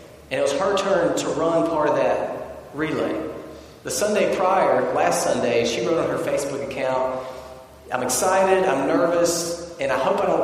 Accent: American